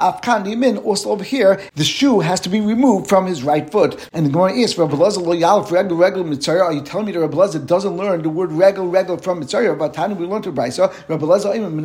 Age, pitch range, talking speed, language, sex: 50-69, 175-210 Hz, 240 wpm, English, male